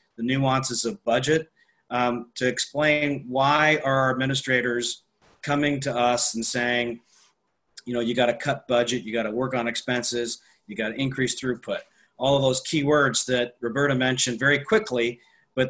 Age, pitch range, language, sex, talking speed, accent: 40-59, 120-145 Hz, English, male, 170 wpm, American